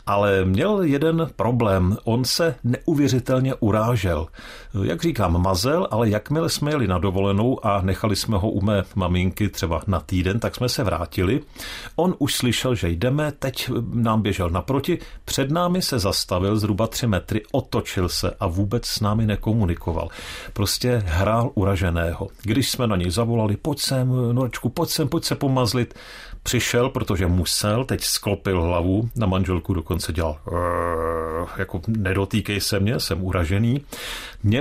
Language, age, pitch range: Czech, 50-69, 95-130 Hz